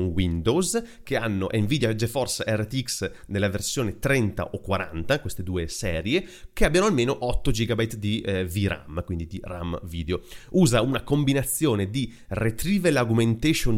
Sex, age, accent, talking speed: male, 30-49, native, 140 wpm